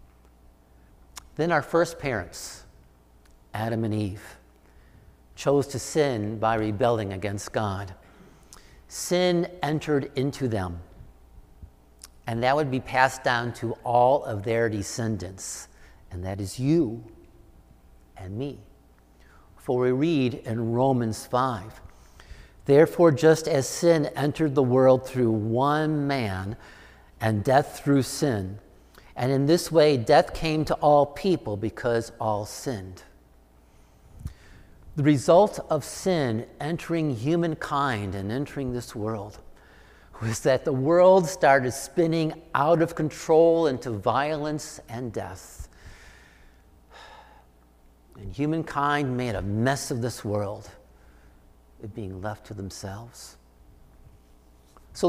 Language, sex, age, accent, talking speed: English, male, 50-69, American, 115 wpm